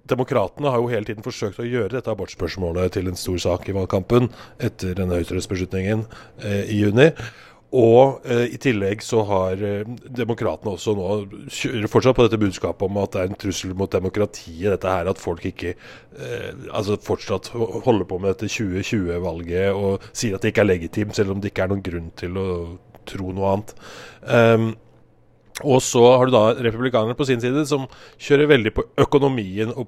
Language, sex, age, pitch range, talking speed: English, male, 30-49, 95-115 Hz, 190 wpm